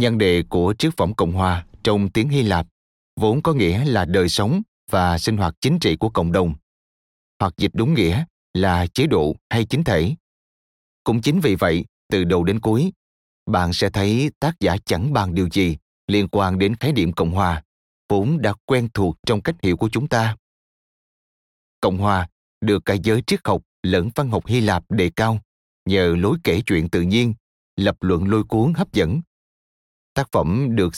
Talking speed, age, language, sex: 190 wpm, 30-49, Vietnamese, male